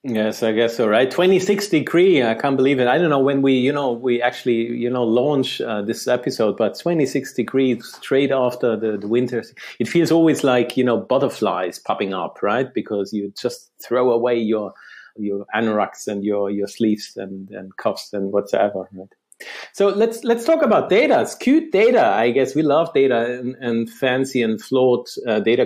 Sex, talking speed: male, 195 wpm